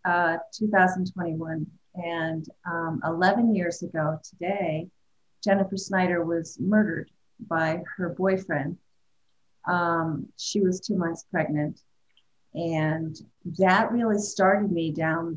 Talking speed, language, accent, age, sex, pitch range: 105 wpm, English, American, 40-59, female, 160-190 Hz